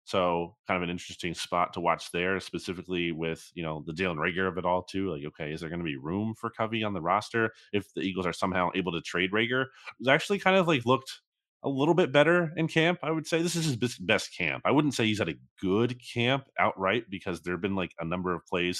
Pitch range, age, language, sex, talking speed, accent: 85-115 Hz, 30-49, English, male, 260 wpm, American